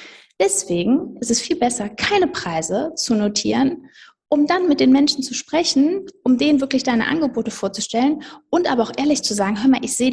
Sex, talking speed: female, 190 wpm